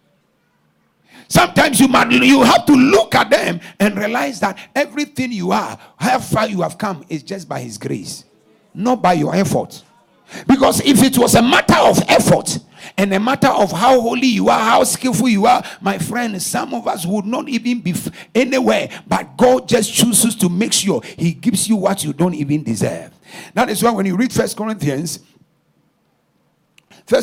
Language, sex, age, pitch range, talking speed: English, male, 50-69, 185-240 Hz, 180 wpm